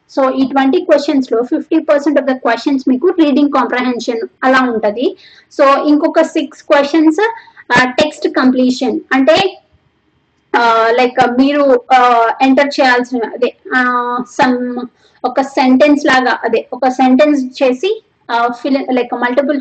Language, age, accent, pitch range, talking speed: Telugu, 20-39, native, 250-310 Hz, 115 wpm